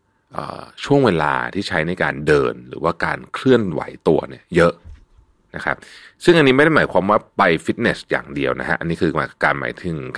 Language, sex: Thai, male